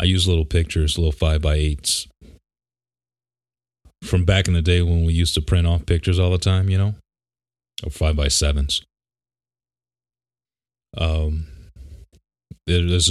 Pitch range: 70-85 Hz